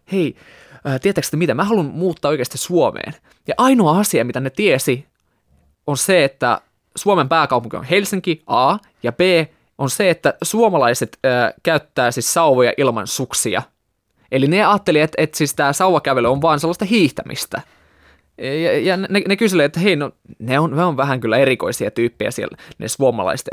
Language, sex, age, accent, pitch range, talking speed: Finnish, male, 20-39, native, 125-175 Hz, 170 wpm